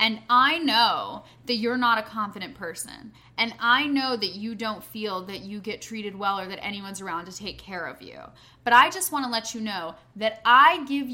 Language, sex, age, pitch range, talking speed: English, female, 10-29, 200-270 Hz, 220 wpm